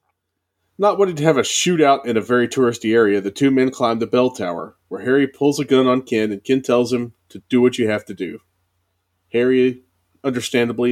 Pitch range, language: 100-135 Hz, English